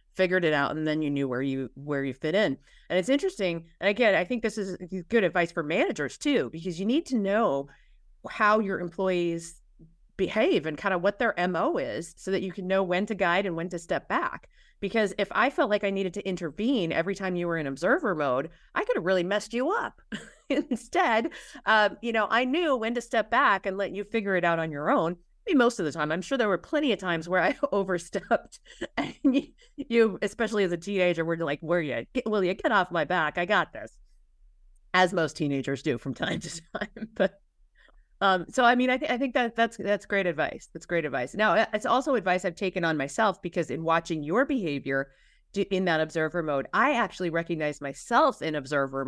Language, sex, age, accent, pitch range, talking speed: English, female, 40-59, American, 165-220 Hz, 220 wpm